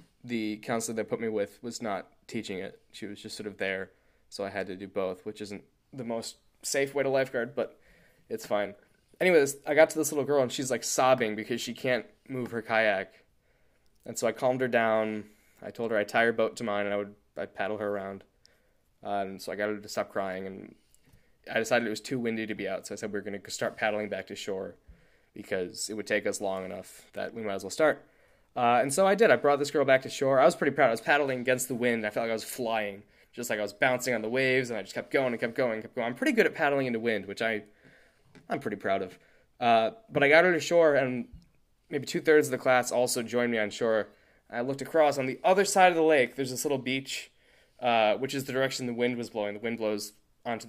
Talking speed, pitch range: 265 wpm, 105-135 Hz